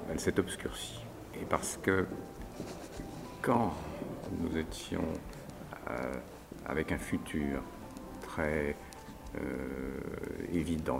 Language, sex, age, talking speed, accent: Italian, male, 50-69, 75 wpm, French